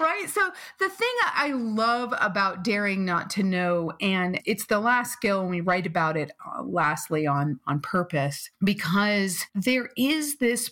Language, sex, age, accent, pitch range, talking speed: English, female, 40-59, American, 175-225 Hz, 170 wpm